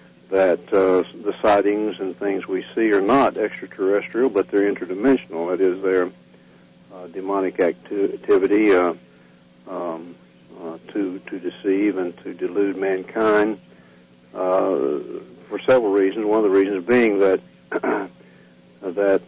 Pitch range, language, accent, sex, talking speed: 80-105 Hz, English, American, male, 130 wpm